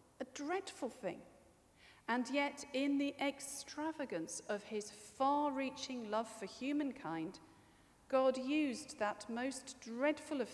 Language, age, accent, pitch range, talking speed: English, 50-69, British, 190-285 Hz, 115 wpm